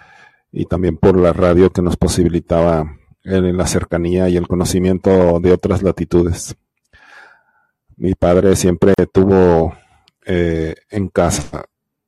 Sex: male